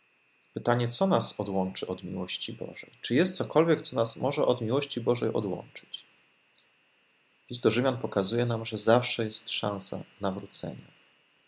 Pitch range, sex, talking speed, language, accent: 110-140 Hz, male, 140 wpm, Polish, native